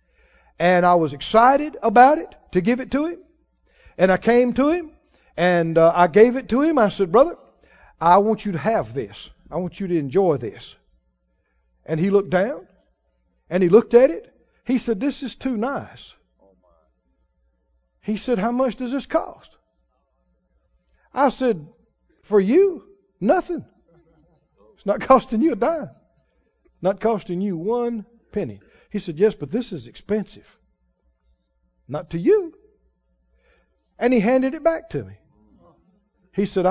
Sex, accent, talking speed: male, American, 155 wpm